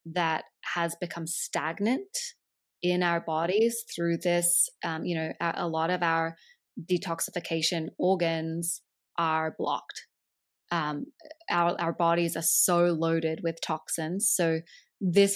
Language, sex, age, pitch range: English, female, 20-39, 170-195 Hz